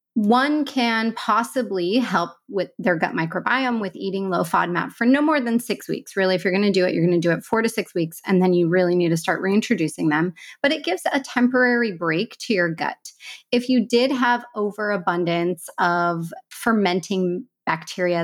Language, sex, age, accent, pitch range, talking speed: English, female, 30-49, American, 175-225 Hz, 190 wpm